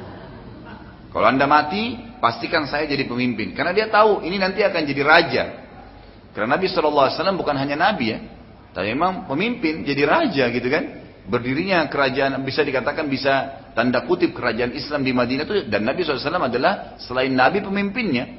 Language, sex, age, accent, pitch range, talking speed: English, male, 30-49, Indonesian, 120-165 Hz, 155 wpm